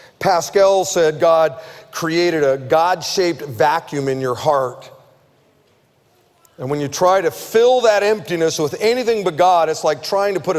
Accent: American